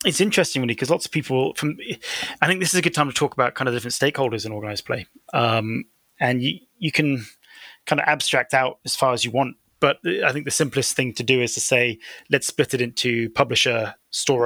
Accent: British